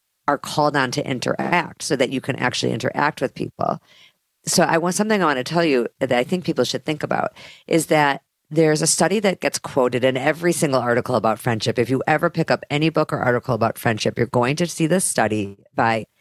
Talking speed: 225 wpm